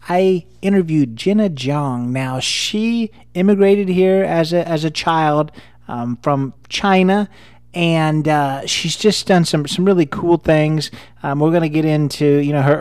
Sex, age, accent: male, 30-49, American